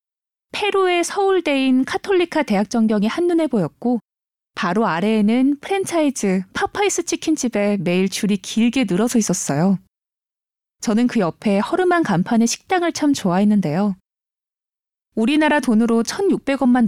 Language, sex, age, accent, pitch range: Korean, female, 20-39, native, 200-275 Hz